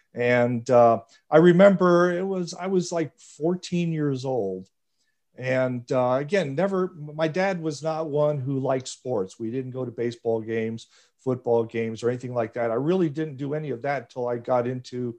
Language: English